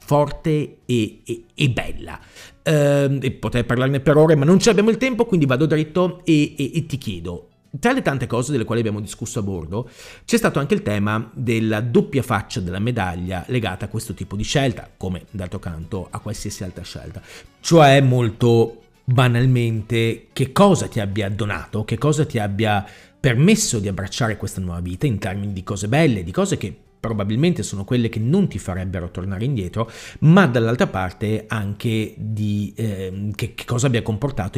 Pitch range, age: 95-125 Hz, 40-59